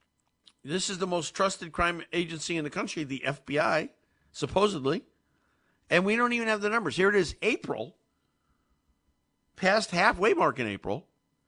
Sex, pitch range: male, 140-200 Hz